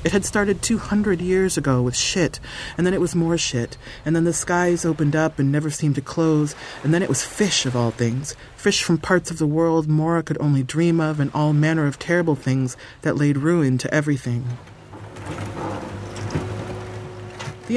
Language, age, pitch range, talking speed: English, 40-59, 125-170 Hz, 195 wpm